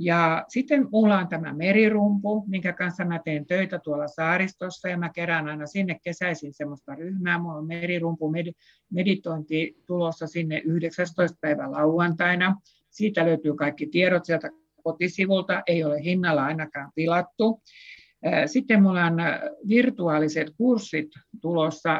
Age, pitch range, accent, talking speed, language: 60-79, 160-195 Hz, native, 130 wpm, Finnish